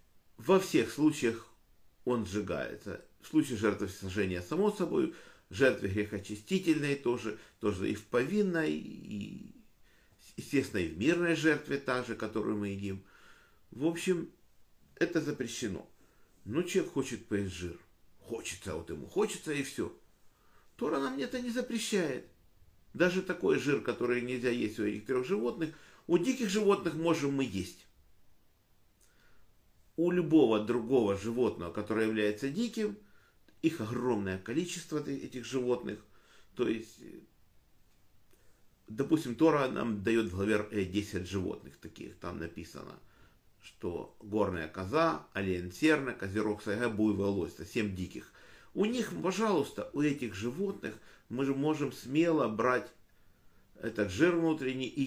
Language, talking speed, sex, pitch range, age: Russian, 120 wpm, male, 105-160 Hz, 50-69